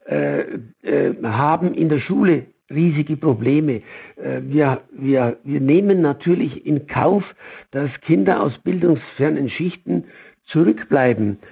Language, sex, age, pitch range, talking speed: German, male, 60-79, 140-170 Hz, 105 wpm